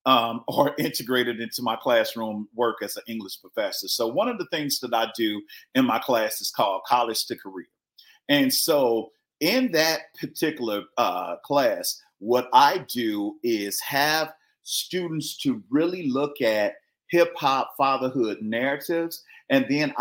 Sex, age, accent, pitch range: male, 40-59, American, 120-170 Hz